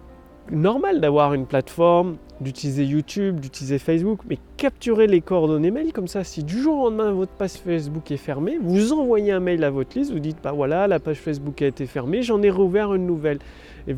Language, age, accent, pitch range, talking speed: French, 30-49, French, 145-200 Hz, 205 wpm